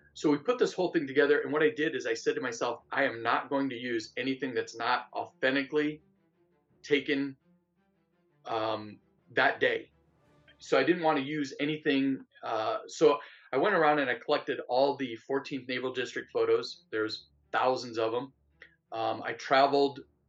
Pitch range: 125-155 Hz